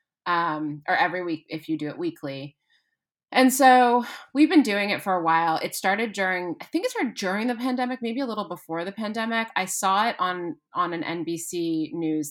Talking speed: 205 wpm